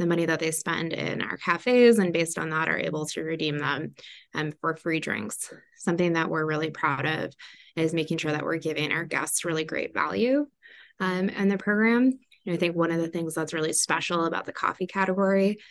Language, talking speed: English, 215 wpm